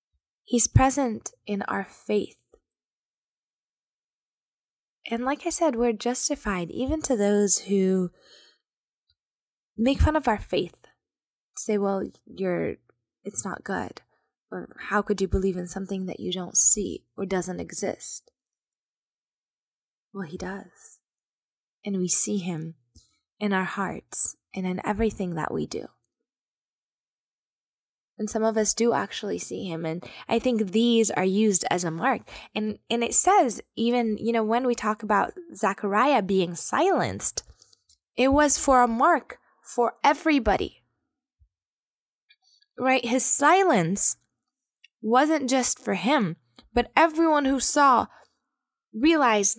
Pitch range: 195-265 Hz